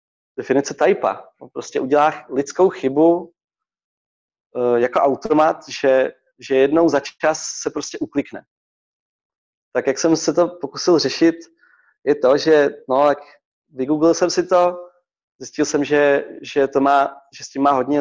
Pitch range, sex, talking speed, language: 130-175 Hz, male, 150 wpm, Czech